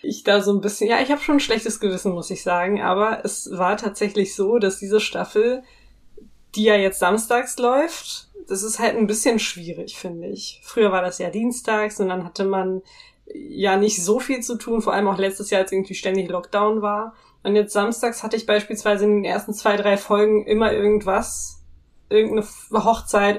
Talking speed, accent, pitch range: 200 wpm, German, 190-220 Hz